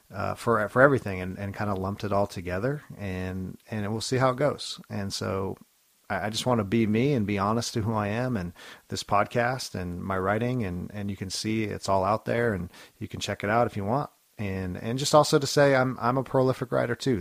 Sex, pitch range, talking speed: male, 95-120 Hz, 250 wpm